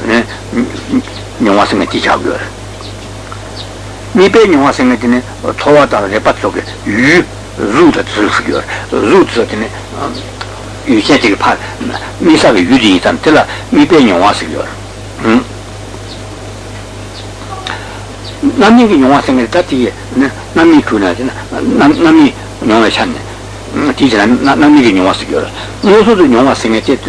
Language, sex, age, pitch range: Italian, male, 60-79, 105-120 Hz